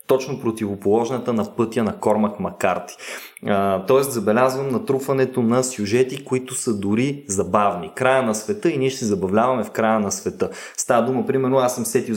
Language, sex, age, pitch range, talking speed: Bulgarian, male, 20-39, 105-140 Hz, 170 wpm